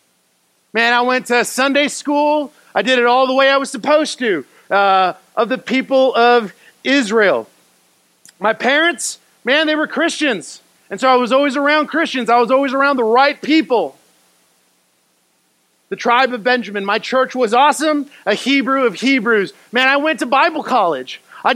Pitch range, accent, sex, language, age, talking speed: 175-275 Hz, American, male, English, 40-59, 170 wpm